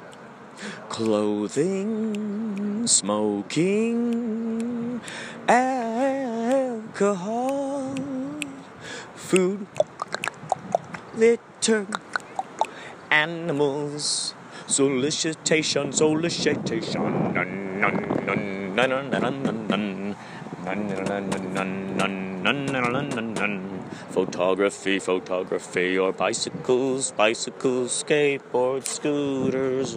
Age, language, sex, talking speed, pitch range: 30-49, English, male, 40 wpm, 105-170 Hz